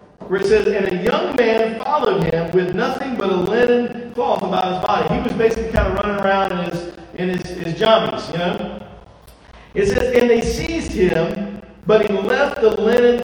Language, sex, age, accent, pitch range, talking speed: English, male, 40-59, American, 180-230 Hz, 200 wpm